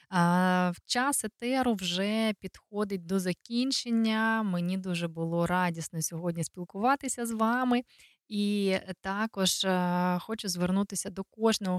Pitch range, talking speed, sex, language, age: 175-210 Hz, 105 wpm, female, Dutch, 20-39